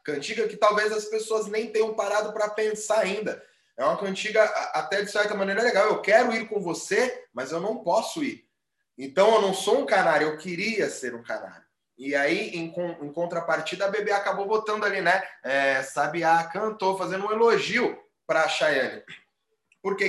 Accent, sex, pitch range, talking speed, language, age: Brazilian, male, 155-215 Hz, 180 wpm, Portuguese, 20-39